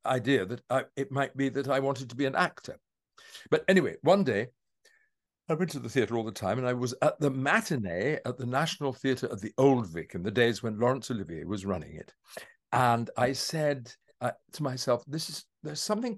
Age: 60-79